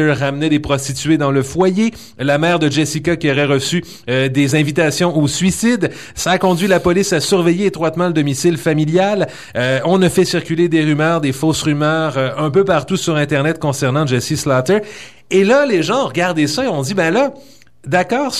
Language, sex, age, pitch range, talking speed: French, male, 30-49, 140-185 Hz, 195 wpm